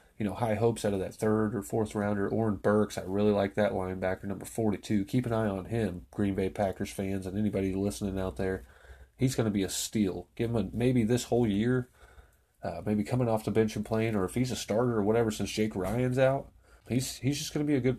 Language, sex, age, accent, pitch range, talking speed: English, male, 30-49, American, 95-115 Hz, 245 wpm